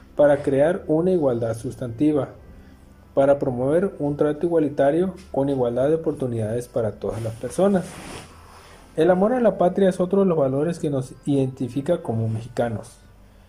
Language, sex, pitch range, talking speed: Spanish, male, 115-165 Hz, 145 wpm